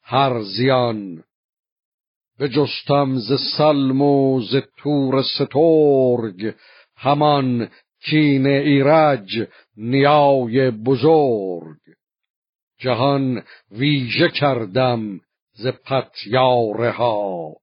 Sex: male